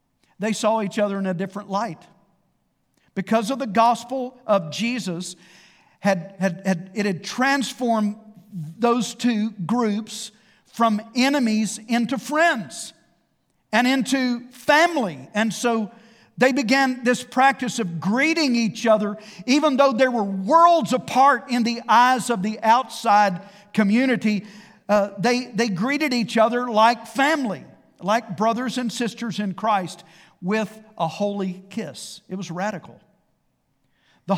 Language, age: English, 50-69